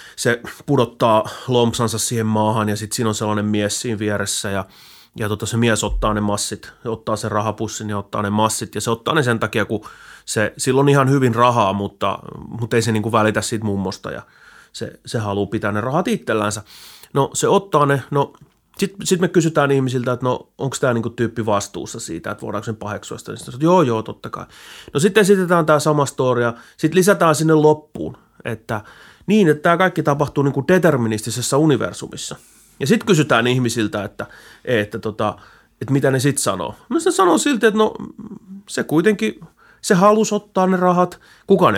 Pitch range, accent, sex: 110-170 Hz, native, male